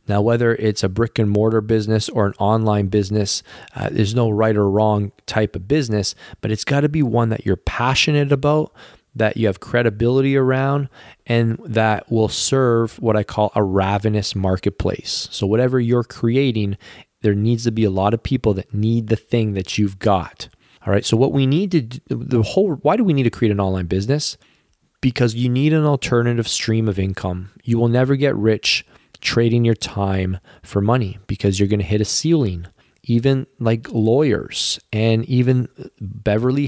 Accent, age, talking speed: American, 20-39, 190 wpm